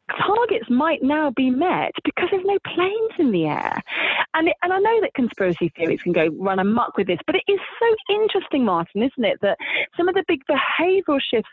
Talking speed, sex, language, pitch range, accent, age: 215 wpm, female, English, 215-305 Hz, British, 30-49